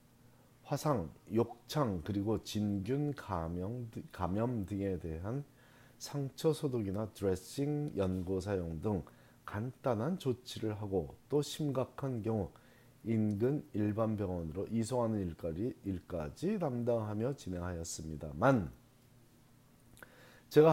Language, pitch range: Korean, 100-125 Hz